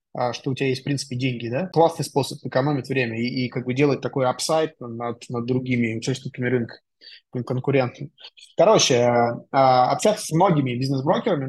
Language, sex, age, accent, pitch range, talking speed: Russian, male, 20-39, native, 130-165 Hz, 150 wpm